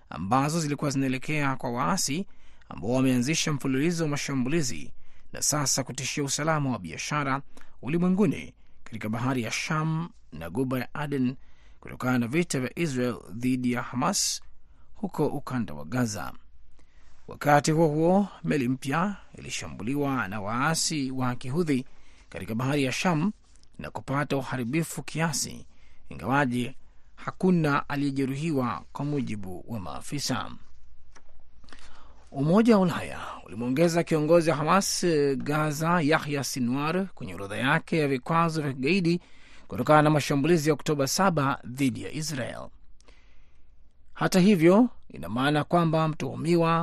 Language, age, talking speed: Swahili, 30-49, 120 wpm